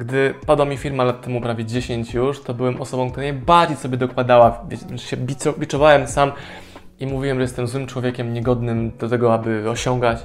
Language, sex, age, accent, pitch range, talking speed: Polish, male, 20-39, native, 120-155 Hz, 180 wpm